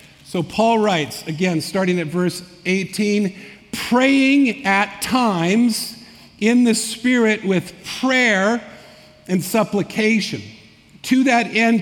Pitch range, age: 175-220 Hz, 50-69